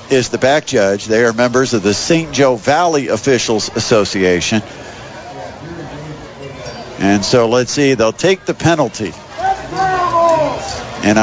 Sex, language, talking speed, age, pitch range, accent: male, English, 125 wpm, 50-69, 125-160 Hz, American